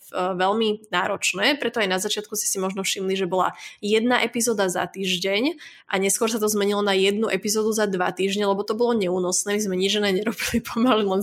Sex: female